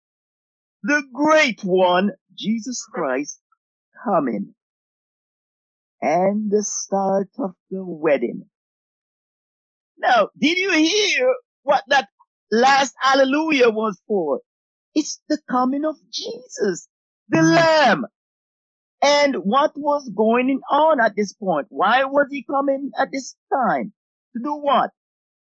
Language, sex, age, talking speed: English, male, 50-69, 110 wpm